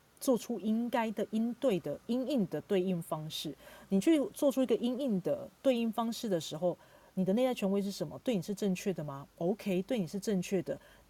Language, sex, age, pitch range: Chinese, female, 40-59, 165-210 Hz